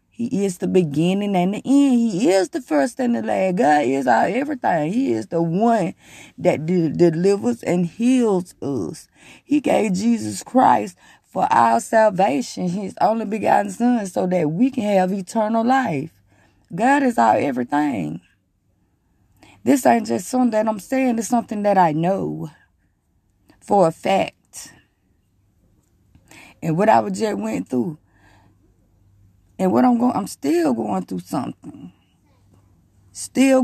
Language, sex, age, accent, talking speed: English, female, 20-39, American, 145 wpm